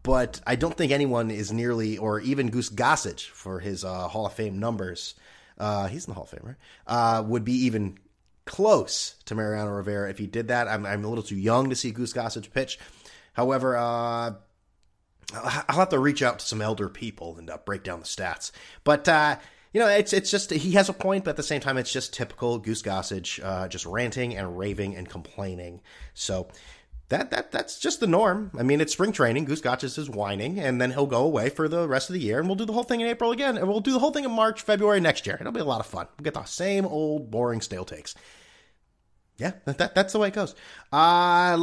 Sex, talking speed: male, 235 wpm